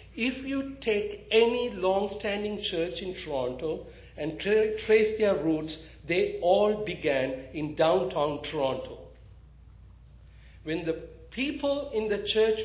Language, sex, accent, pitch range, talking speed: English, male, Indian, 170-245 Hz, 120 wpm